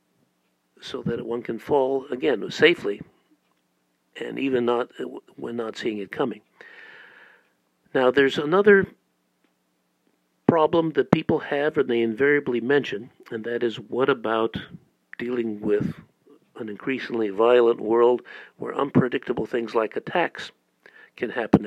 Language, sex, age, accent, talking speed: English, male, 50-69, American, 120 wpm